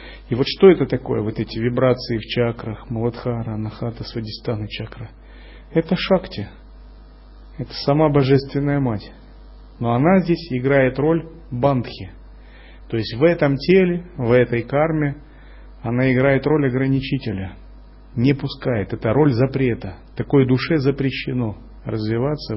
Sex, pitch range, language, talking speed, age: male, 105-135 Hz, Russian, 125 wpm, 30-49